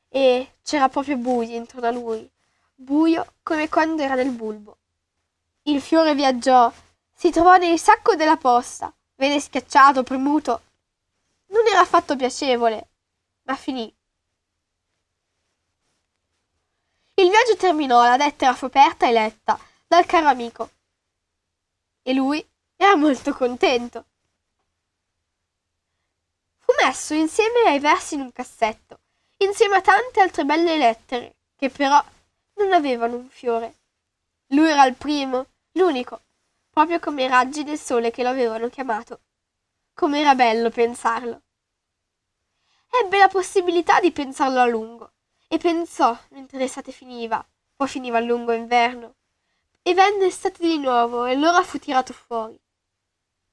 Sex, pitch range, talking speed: female, 225-315 Hz, 125 wpm